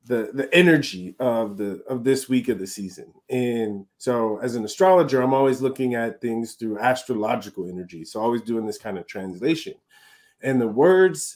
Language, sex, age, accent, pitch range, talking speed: English, male, 30-49, American, 125-150 Hz, 180 wpm